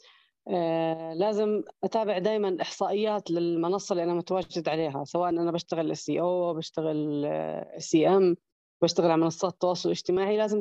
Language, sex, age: Arabic, female, 30-49